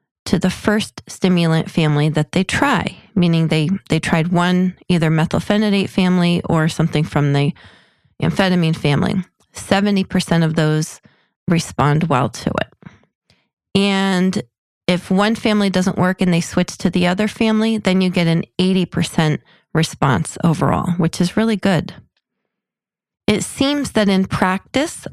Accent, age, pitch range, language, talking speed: American, 30-49, 165-200 Hz, English, 140 wpm